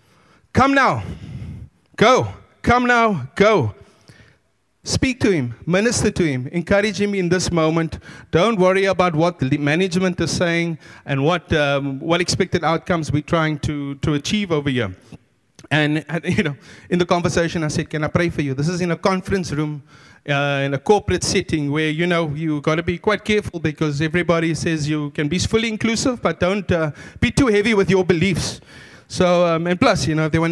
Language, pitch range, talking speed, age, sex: English, 150-190 Hz, 190 wpm, 30-49, male